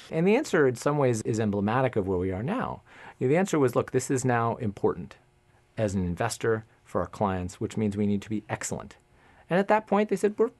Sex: male